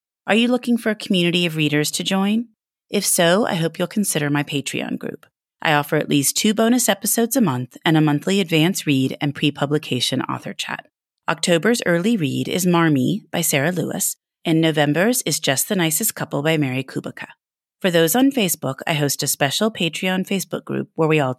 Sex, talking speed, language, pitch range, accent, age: female, 195 wpm, English, 145-195 Hz, American, 30-49